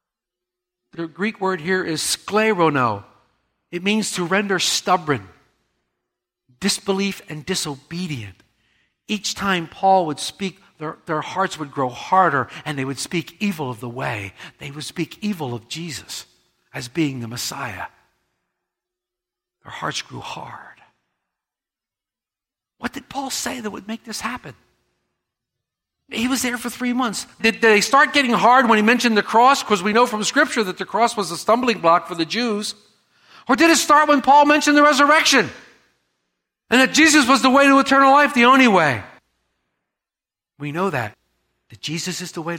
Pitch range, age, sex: 150-220 Hz, 60-79, male